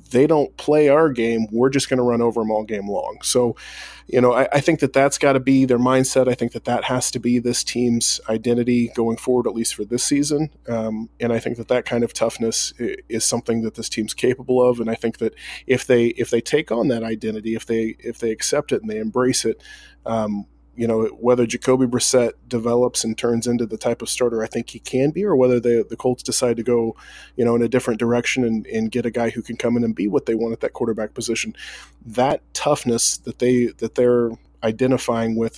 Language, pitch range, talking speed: English, 115-125 Hz, 240 wpm